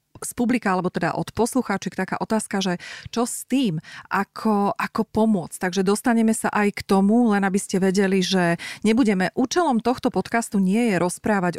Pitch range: 175-215 Hz